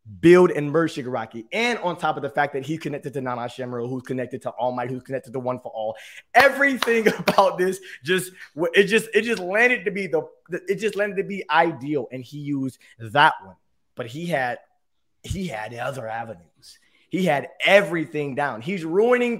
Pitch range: 165-250 Hz